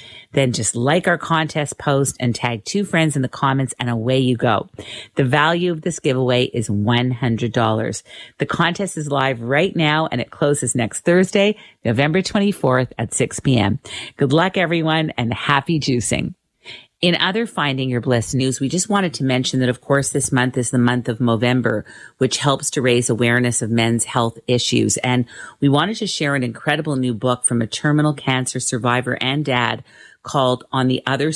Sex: female